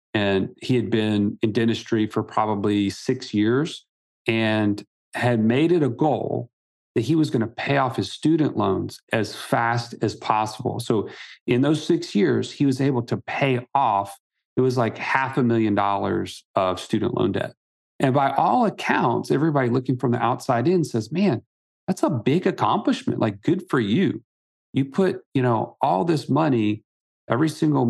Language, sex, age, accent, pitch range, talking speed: English, male, 40-59, American, 110-135 Hz, 170 wpm